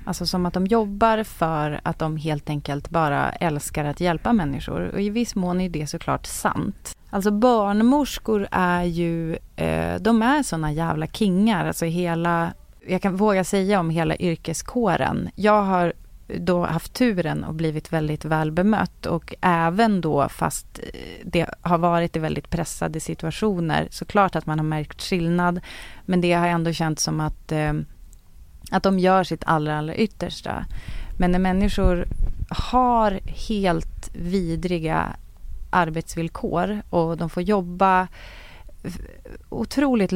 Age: 30-49